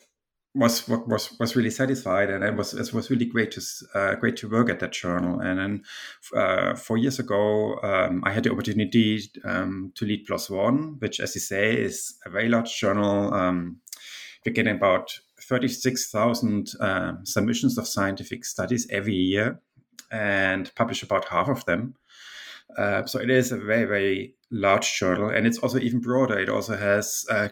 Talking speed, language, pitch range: 180 wpm, English, 100-120 Hz